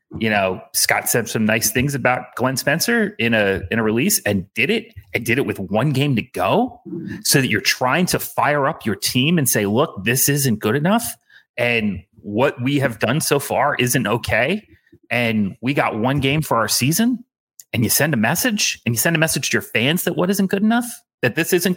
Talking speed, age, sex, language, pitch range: 220 wpm, 30-49, male, English, 110-170 Hz